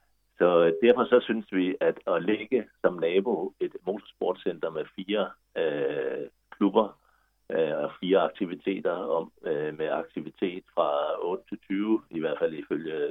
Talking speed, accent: 145 wpm, native